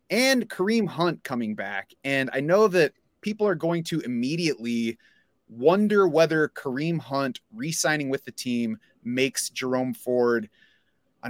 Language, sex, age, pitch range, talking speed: English, male, 30-49, 120-160 Hz, 140 wpm